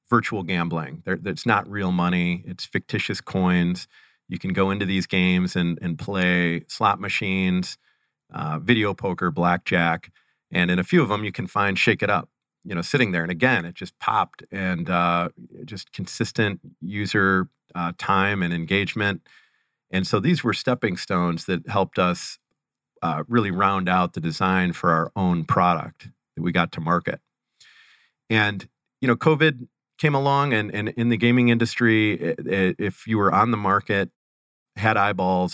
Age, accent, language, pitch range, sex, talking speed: 40-59, American, English, 90-105 Hz, male, 170 wpm